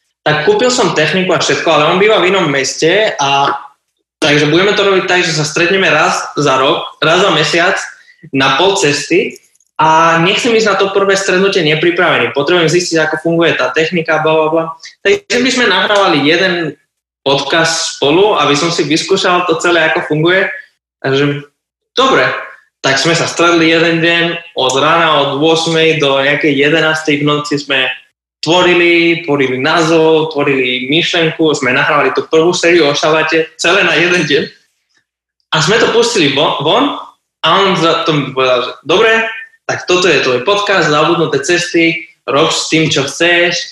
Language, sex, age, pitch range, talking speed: Slovak, male, 20-39, 145-180 Hz, 165 wpm